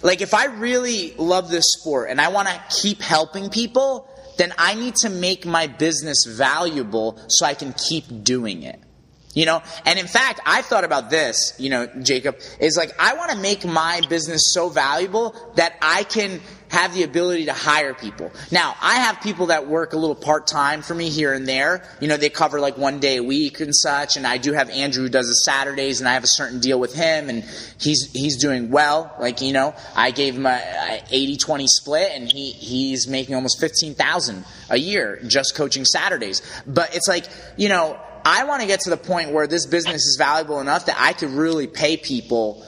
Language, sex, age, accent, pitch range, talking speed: English, male, 30-49, American, 135-175 Hz, 215 wpm